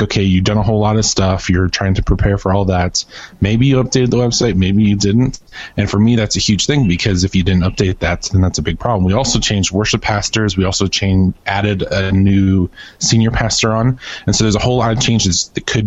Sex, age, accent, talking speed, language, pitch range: male, 20-39, American, 245 wpm, English, 95-110 Hz